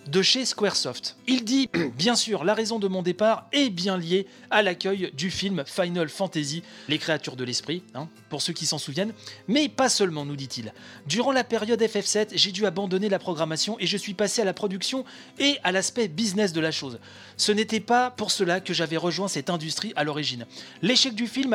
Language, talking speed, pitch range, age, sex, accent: French, 205 wpm, 155-220 Hz, 30-49, male, French